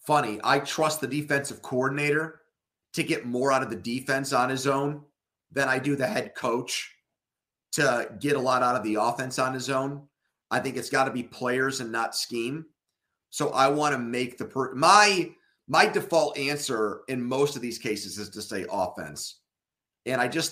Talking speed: 190 wpm